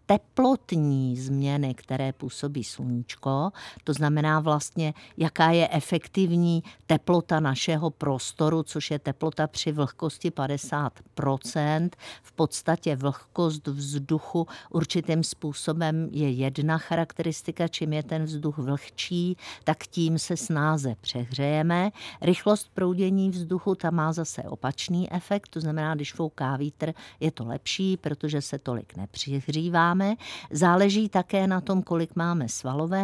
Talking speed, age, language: 120 wpm, 50-69, Czech